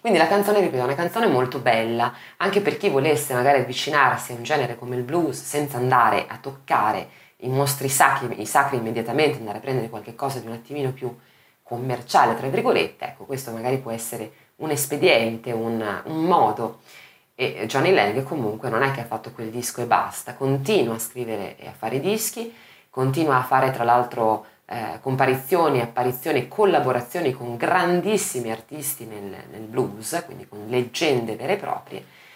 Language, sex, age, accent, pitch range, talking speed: Italian, female, 20-39, native, 120-145 Hz, 175 wpm